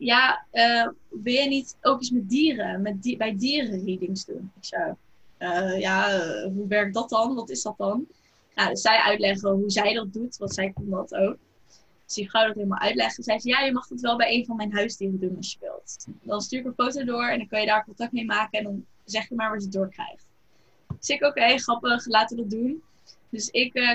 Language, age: Dutch, 10-29